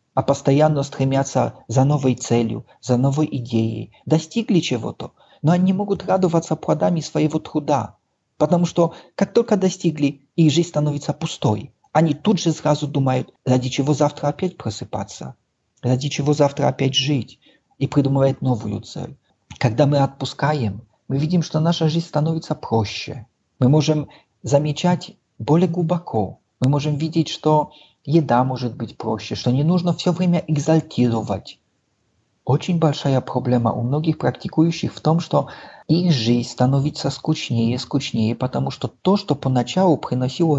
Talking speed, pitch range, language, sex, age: 145 wpm, 130-165 Hz, Russian, male, 40-59